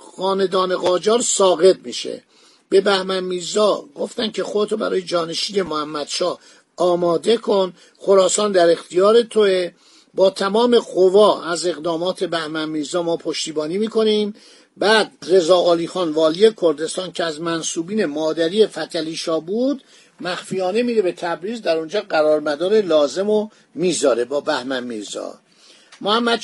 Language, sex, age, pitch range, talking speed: Persian, male, 50-69, 165-210 Hz, 125 wpm